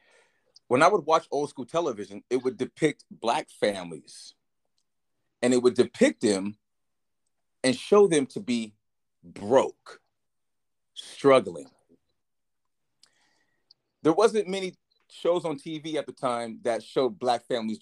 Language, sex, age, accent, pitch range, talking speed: English, male, 30-49, American, 105-165 Hz, 125 wpm